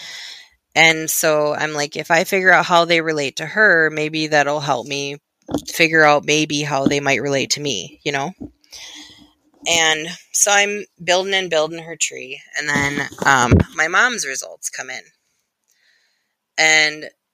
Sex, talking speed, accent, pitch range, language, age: female, 155 wpm, American, 155-195 Hz, English, 20-39